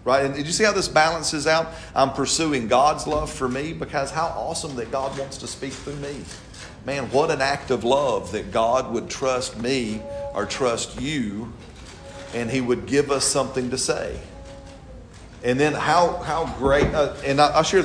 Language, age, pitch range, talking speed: English, 40-59, 115-140 Hz, 190 wpm